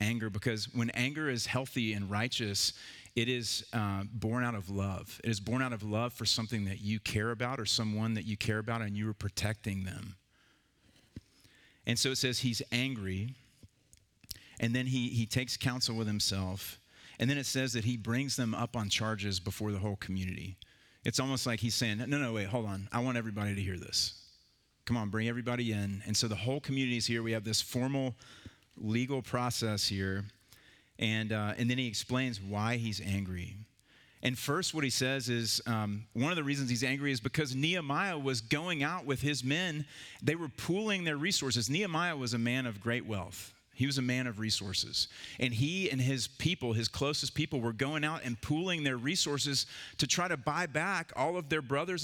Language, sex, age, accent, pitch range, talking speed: English, male, 40-59, American, 110-140 Hz, 200 wpm